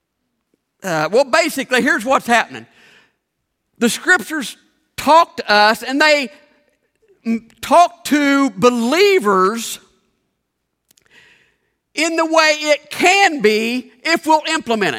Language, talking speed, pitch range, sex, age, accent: English, 100 wpm, 255-325 Hz, male, 50-69, American